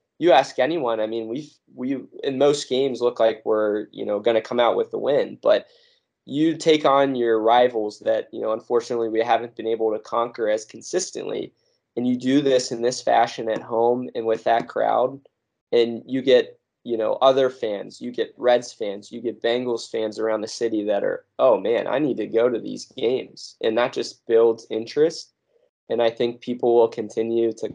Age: 20-39